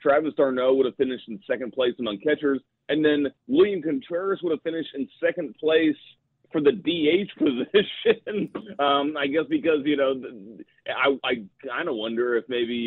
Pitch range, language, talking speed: 110-140 Hz, English, 170 wpm